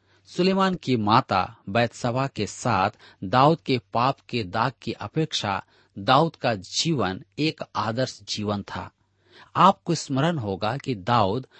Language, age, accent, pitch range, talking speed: Hindi, 40-59, native, 105-145 Hz, 130 wpm